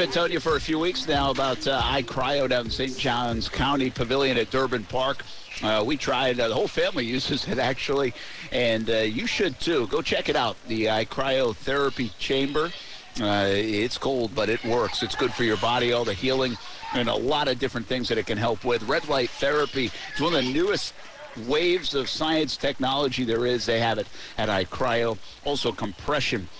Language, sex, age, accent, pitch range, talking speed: English, male, 50-69, American, 115-150 Hz, 200 wpm